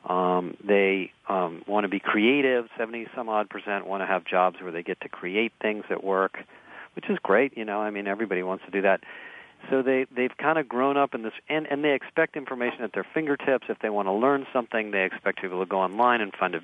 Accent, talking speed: American, 240 wpm